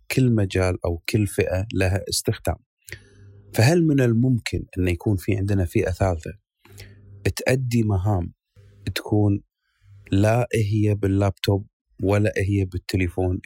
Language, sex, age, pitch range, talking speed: Arabic, male, 30-49, 95-115 Hz, 110 wpm